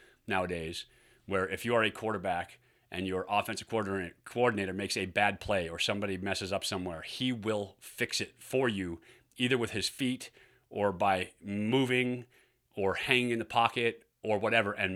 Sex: male